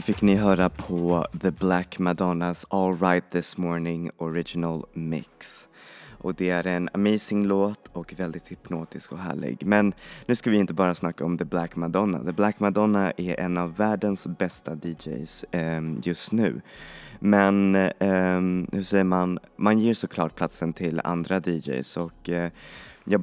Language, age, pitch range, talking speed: Swedish, 20-39, 85-95 Hz, 160 wpm